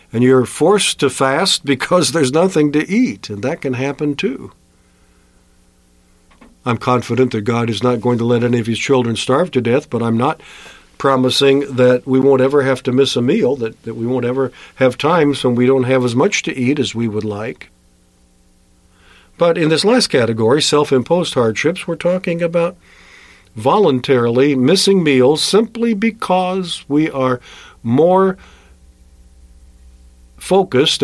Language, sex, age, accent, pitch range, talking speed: English, male, 50-69, American, 115-145 Hz, 160 wpm